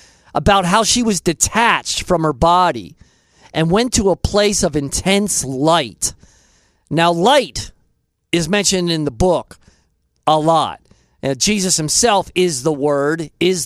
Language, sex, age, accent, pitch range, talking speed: English, male, 40-59, American, 150-210 Hz, 135 wpm